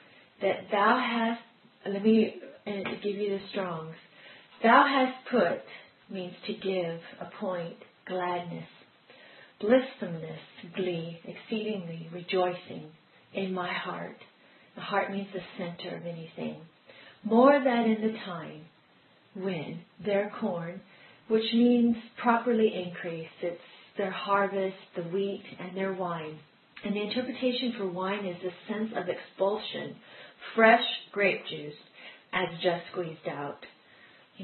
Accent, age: American, 40-59